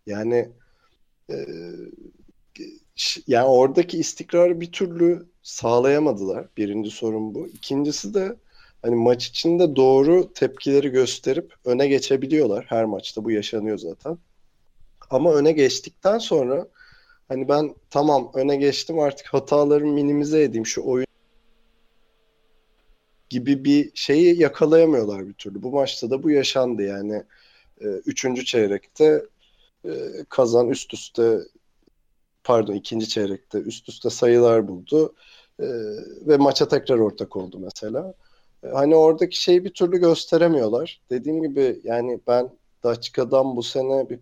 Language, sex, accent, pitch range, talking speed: Turkish, male, native, 115-160 Hz, 120 wpm